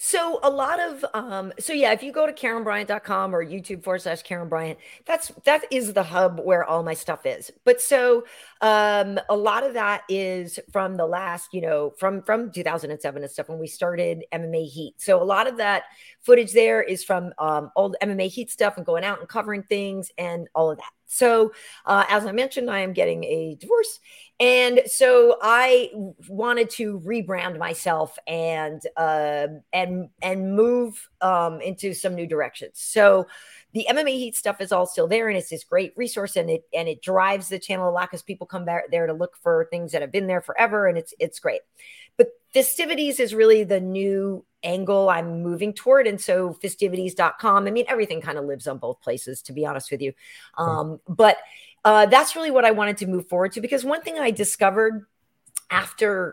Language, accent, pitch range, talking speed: English, American, 170-240 Hz, 200 wpm